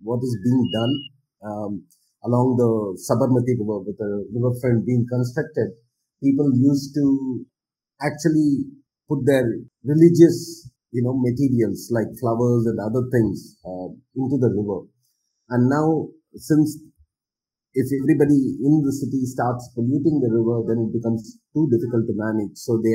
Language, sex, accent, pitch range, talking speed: English, male, Indian, 115-145 Hz, 140 wpm